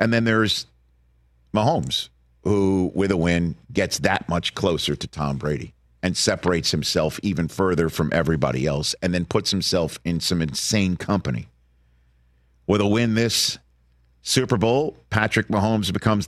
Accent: American